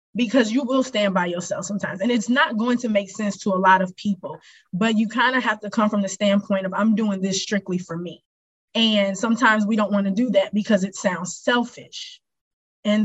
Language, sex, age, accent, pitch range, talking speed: English, female, 20-39, American, 200-245 Hz, 225 wpm